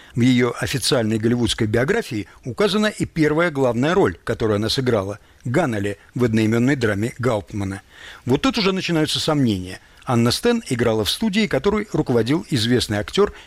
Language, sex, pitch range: Russian, male, 115-160 Hz